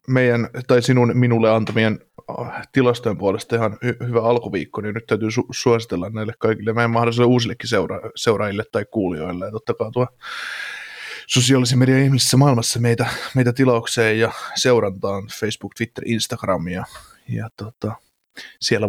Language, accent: Finnish, native